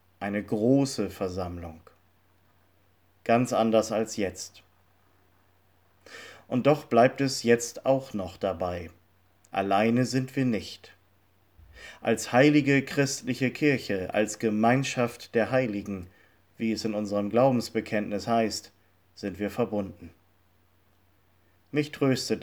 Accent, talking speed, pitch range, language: German, 100 wpm, 95-125 Hz, German